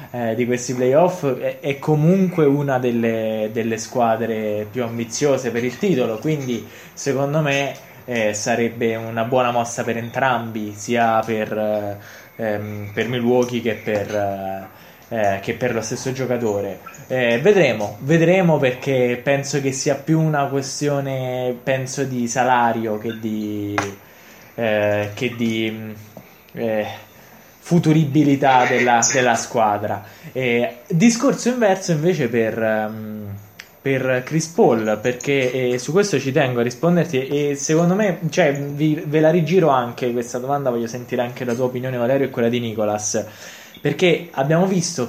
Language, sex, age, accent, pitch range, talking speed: Italian, male, 20-39, native, 115-145 Hz, 120 wpm